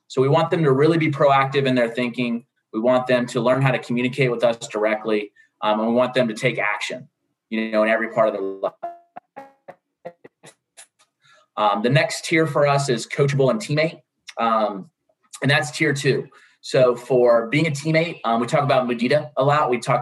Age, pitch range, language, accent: 30-49, 115-140 Hz, English, American